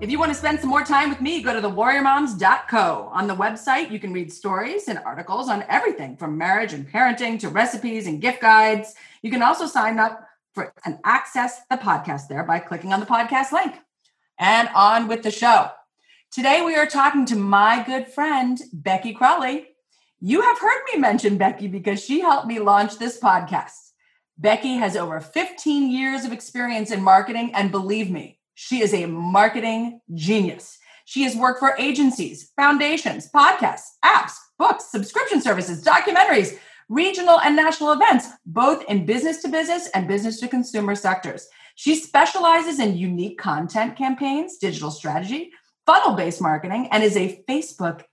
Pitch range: 200-290 Hz